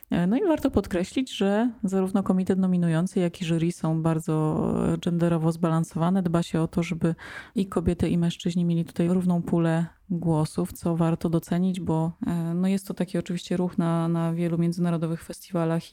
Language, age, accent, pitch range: Polish, 20-39, native, 170-200 Hz